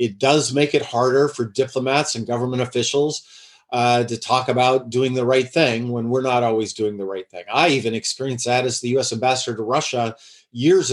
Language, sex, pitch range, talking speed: English, male, 115-145 Hz, 205 wpm